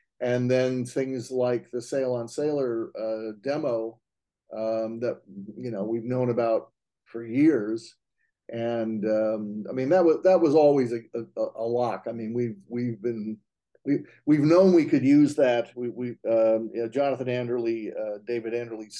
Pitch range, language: 110-130 Hz, English